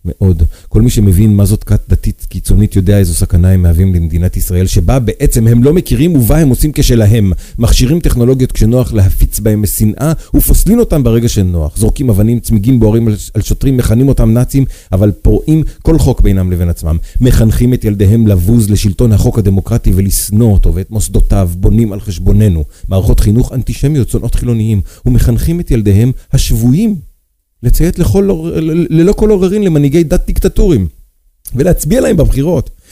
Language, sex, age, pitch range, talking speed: Hebrew, male, 40-59, 90-125 Hz, 155 wpm